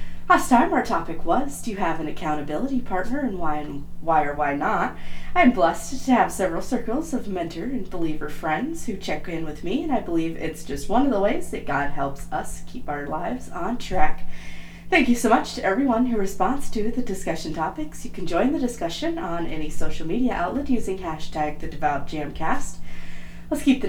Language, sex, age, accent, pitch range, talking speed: English, female, 40-59, American, 150-220 Hz, 205 wpm